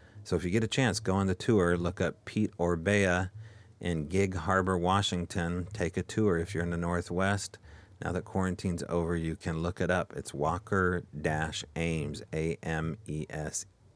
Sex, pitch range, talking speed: male, 85-105 Hz, 165 wpm